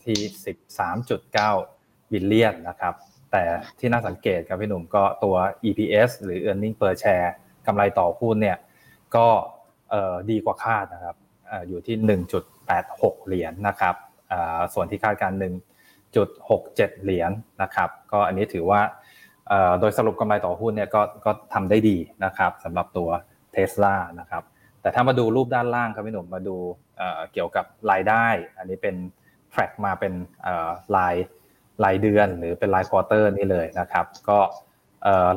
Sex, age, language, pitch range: male, 20-39, Thai, 95-110 Hz